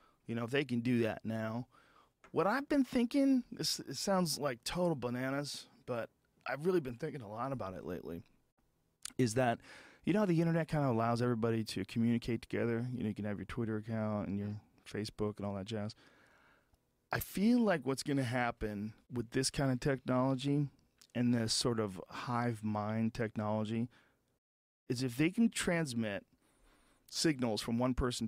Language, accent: English, American